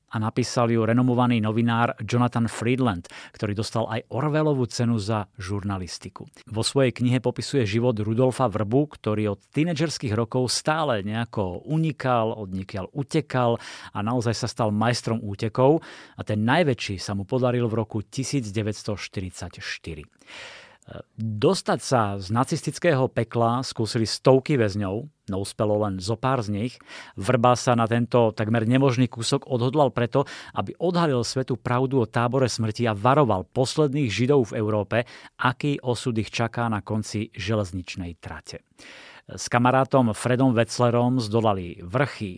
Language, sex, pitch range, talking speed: Slovak, male, 110-130 Hz, 135 wpm